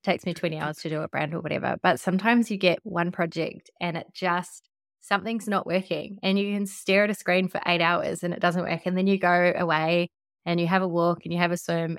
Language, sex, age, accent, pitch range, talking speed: English, female, 20-39, Australian, 160-180 Hz, 255 wpm